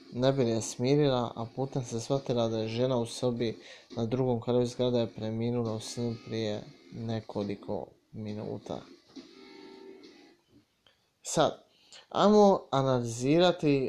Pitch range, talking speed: 120-155 Hz, 110 wpm